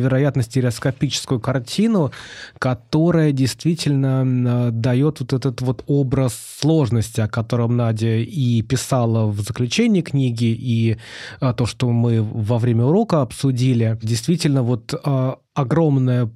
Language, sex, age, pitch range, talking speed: Russian, male, 20-39, 120-145 Hz, 110 wpm